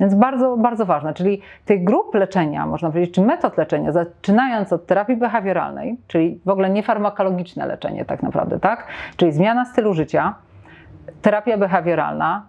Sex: female